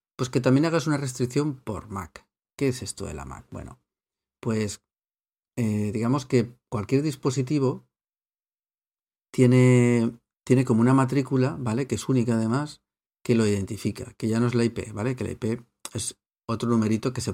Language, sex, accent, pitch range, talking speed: Spanish, male, Spanish, 105-125 Hz, 170 wpm